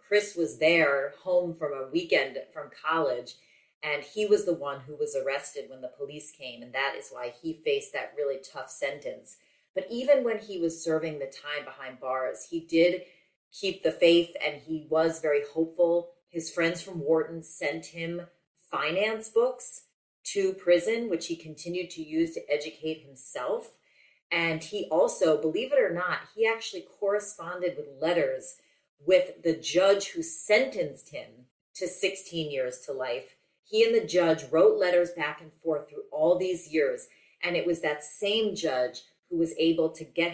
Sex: female